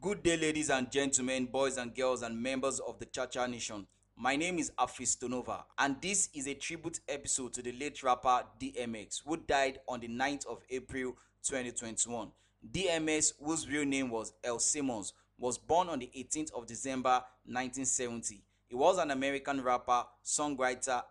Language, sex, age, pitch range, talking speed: English, male, 20-39, 120-140 Hz, 170 wpm